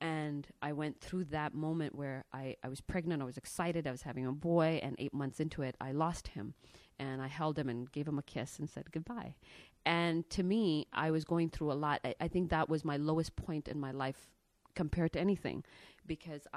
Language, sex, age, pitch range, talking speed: English, female, 30-49, 140-165 Hz, 230 wpm